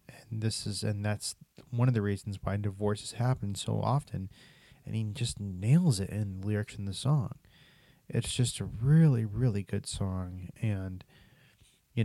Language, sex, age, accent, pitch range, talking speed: English, male, 30-49, American, 105-140 Hz, 165 wpm